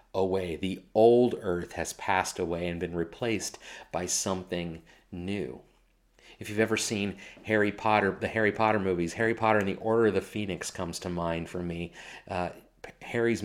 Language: English